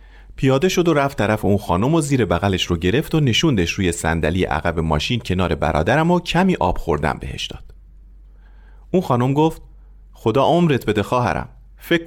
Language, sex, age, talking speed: Persian, male, 40-59, 170 wpm